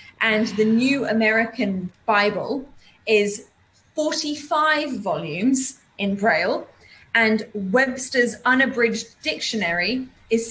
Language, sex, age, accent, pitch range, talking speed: English, female, 20-39, British, 205-260 Hz, 85 wpm